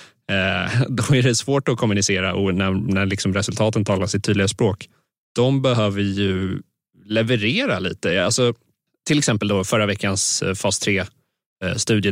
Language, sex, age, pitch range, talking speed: Swedish, male, 20-39, 100-125 Hz, 135 wpm